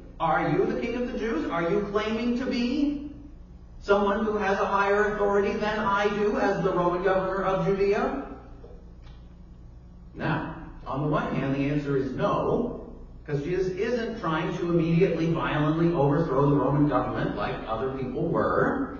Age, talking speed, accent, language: 40-59, 160 wpm, American, English